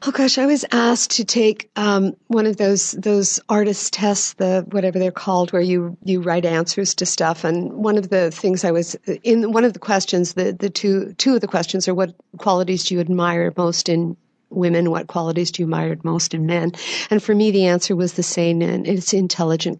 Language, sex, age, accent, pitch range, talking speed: English, female, 50-69, American, 165-195 Hz, 220 wpm